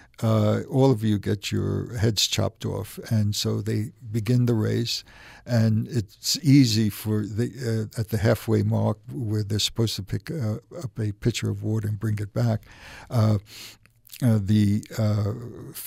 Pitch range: 105-120 Hz